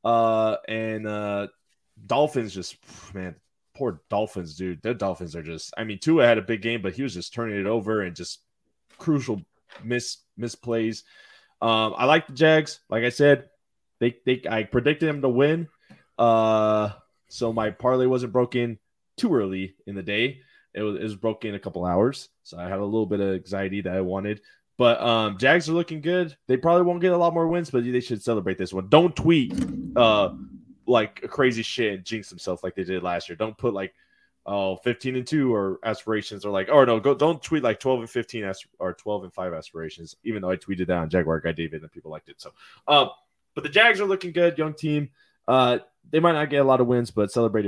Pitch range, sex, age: 100-130 Hz, male, 20-39